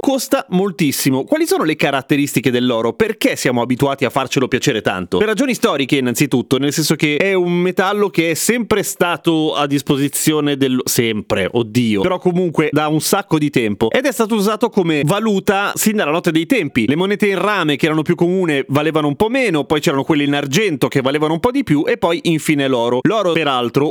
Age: 30-49